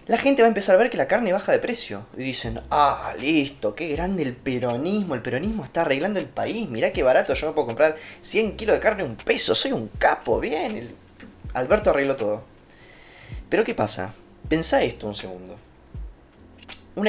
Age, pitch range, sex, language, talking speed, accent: 20-39, 105-155 Hz, male, Spanish, 195 wpm, Argentinian